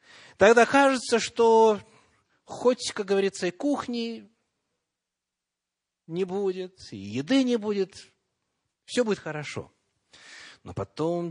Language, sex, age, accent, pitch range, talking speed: Russian, male, 30-49, native, 140-225 Hz, 100 wpm